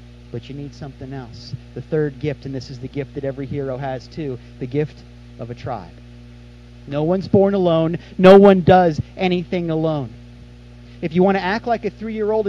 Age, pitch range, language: 30-49, 120-170 Hz, English